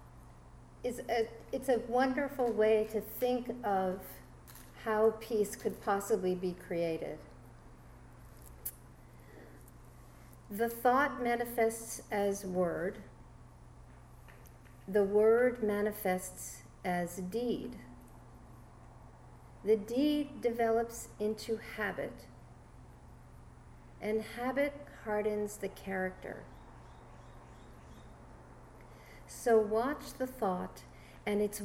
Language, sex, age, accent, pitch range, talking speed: English, female, 50-69, American, 185-235 Hz, 75 wpm